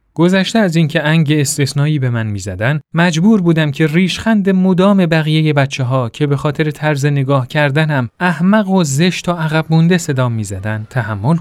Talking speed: 165 wpm